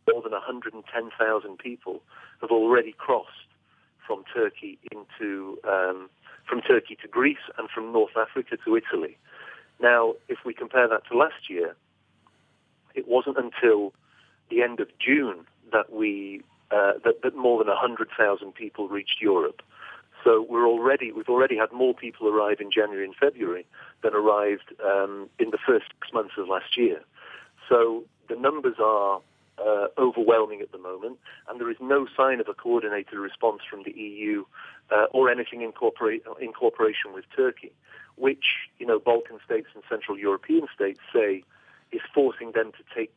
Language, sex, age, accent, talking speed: English, male, 40-59, British, 160 wpm